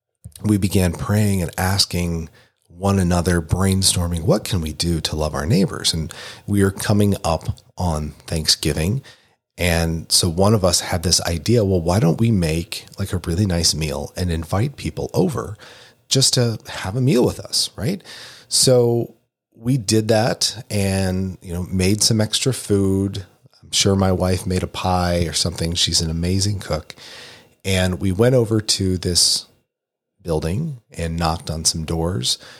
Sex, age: male, 40-59